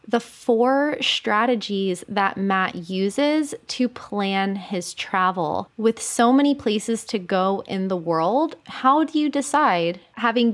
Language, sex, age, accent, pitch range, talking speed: English, female, 20-39, American, 185-235 Hz, 135 wpm